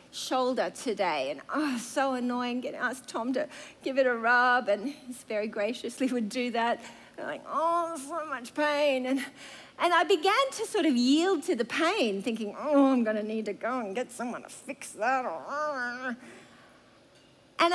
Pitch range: 240-305 Hz